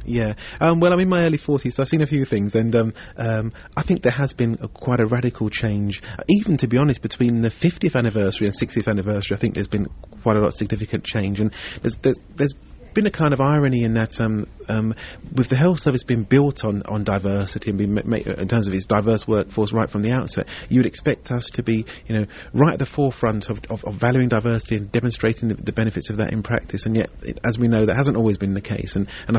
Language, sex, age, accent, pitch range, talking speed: English, male, 30-49, British, 105-120 Hz, 245 wpm